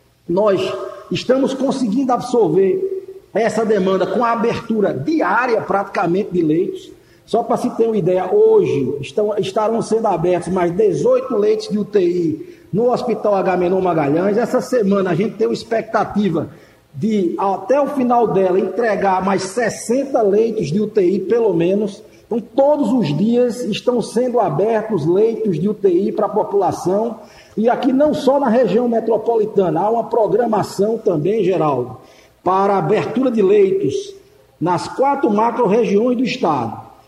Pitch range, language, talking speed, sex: 195-245 Hz, Portuguese, 140 wpm, male